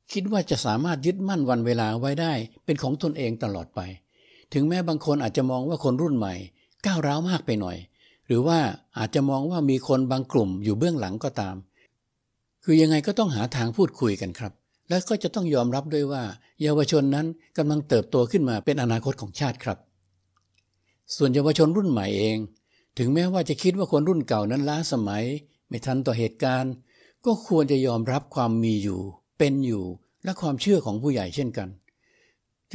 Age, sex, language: 60-79, male, Thai